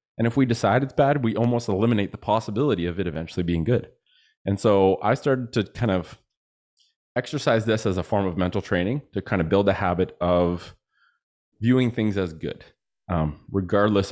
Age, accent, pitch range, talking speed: 30-49, American, 90-120 Hz, 185 wpm